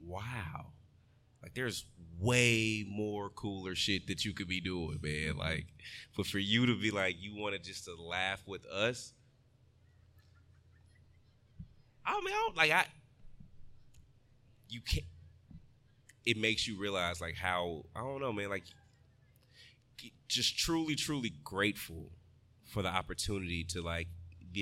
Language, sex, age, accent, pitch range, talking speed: English, male, 20-39, American, 90-115 Hz, 140 wpm